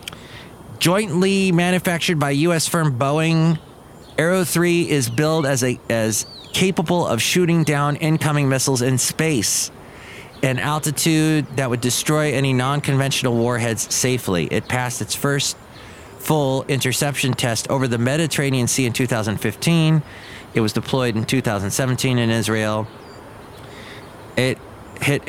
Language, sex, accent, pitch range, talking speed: English, male, American, 110-150 Hz, 120 wpm